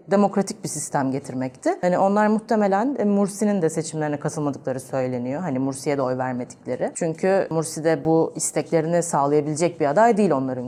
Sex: female